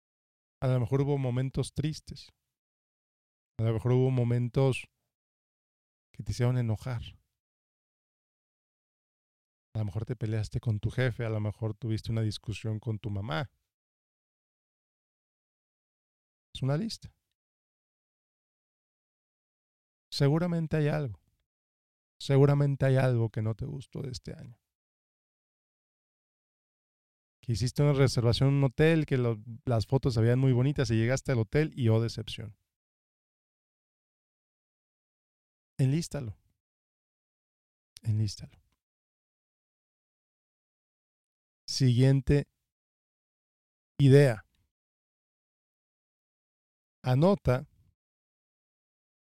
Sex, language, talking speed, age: male, Spanish, 90 wpm, 40-59